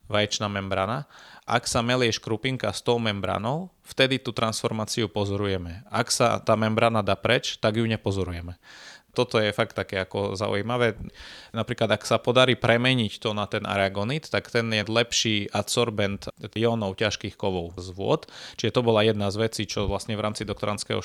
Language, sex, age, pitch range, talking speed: Slovak, male, 20-39, 100-115 Hz, 165 wpm